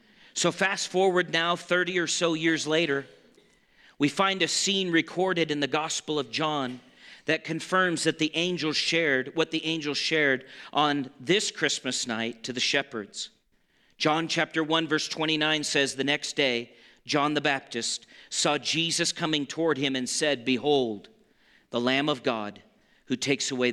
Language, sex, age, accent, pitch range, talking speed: English, male, 40-59, American, 150-190 Hz, 160 wpm